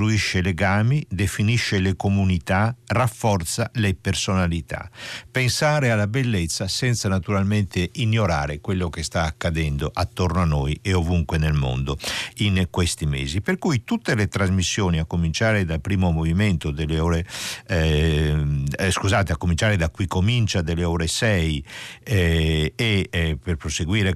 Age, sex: 60-79, male